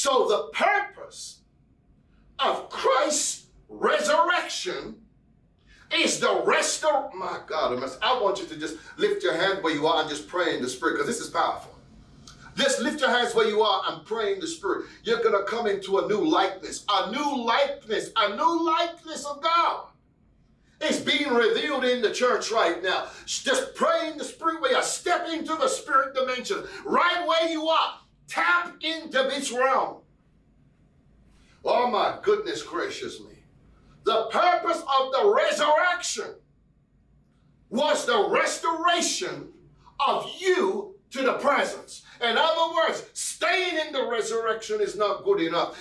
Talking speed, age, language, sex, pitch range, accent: 155 wpm, 50-69, English, male, 265-390 Hz, American